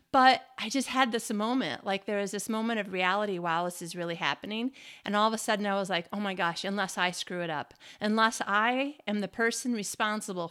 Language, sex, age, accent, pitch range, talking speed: English, female, 30-49, American, 190-245 Hz, 230 wpm